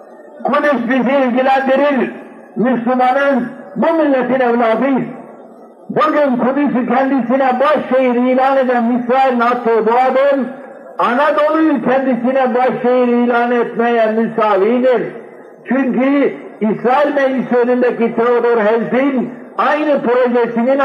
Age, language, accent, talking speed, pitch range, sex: 60-79, Turkish, native, 90 wpm, 240-265 Hz, male